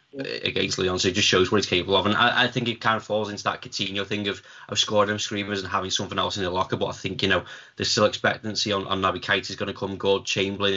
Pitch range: 95-120 Hz